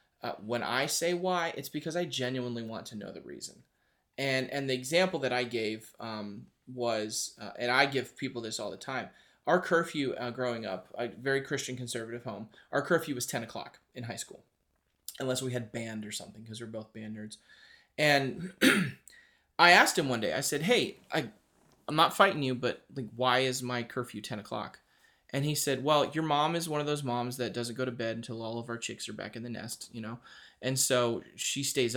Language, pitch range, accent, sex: English, 115-145 Hz, American, male